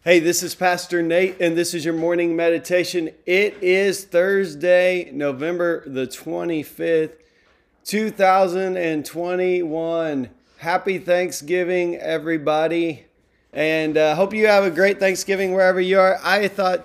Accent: American